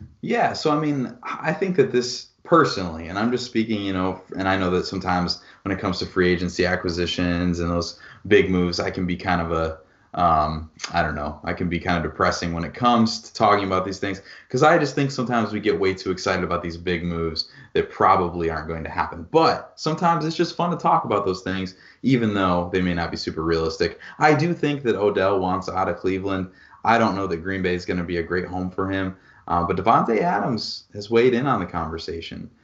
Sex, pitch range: male, 85-105 Hz